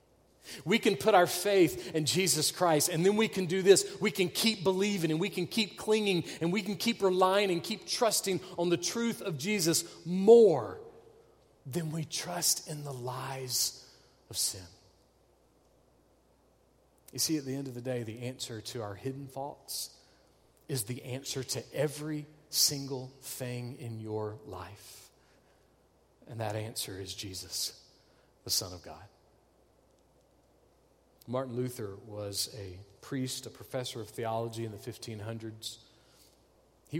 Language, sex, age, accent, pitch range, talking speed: English, male, 40-59, American, 120-170 Hz, 150 wpm